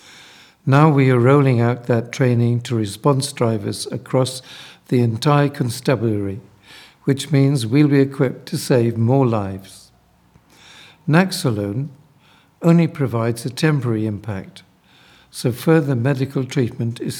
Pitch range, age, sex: 115-140 Hz, 60-79, male